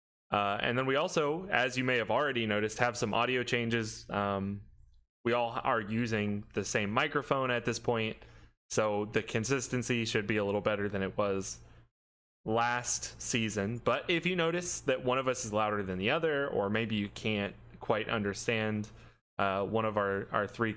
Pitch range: 105-125 Hz